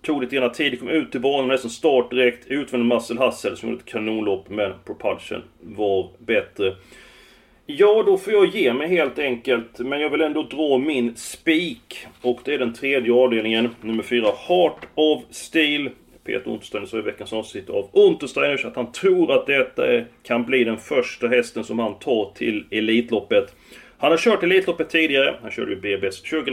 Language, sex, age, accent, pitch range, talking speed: Swedish, male, 30-49, native, 115-160 Hz, 185 wpm